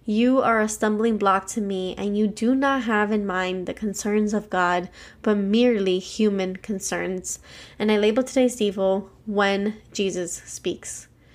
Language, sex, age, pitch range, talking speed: English, female, 20-39, 200-235 Hz, 160 wpm